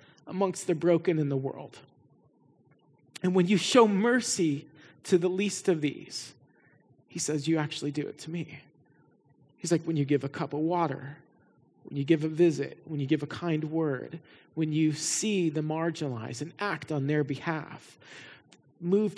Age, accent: 40-59, American